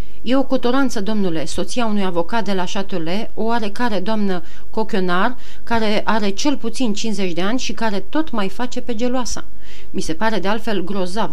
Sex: female